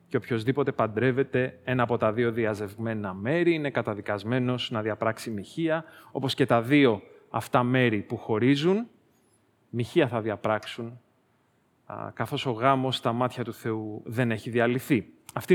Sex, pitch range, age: male, 110-150 Hz, 30-49